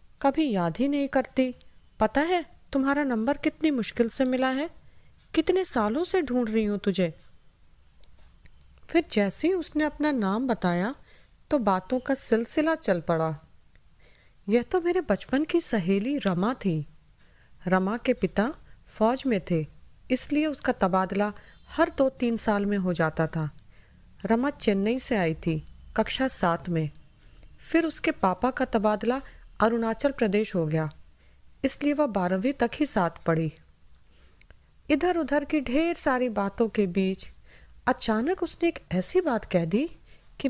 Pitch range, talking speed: 170-270 Hz, 145 wpm